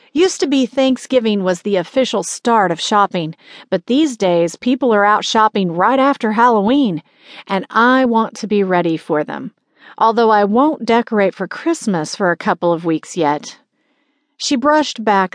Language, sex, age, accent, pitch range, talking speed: English, female, 40-59, American, 180-255 Hz, 170 wpm